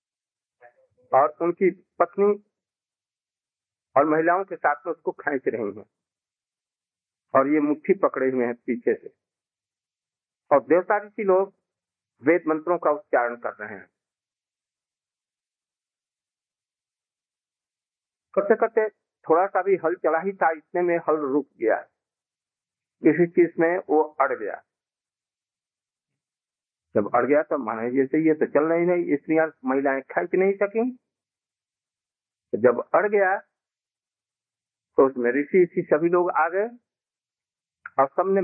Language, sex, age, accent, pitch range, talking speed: Hindi, male, 50-69, native, 140-195 Hz, 120 wpm